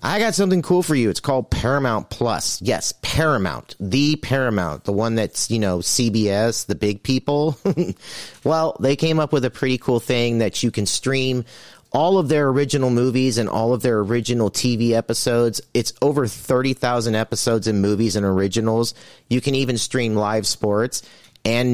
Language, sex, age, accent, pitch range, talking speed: English, male, 30-49, American, 110-135 Hz, 175 wpm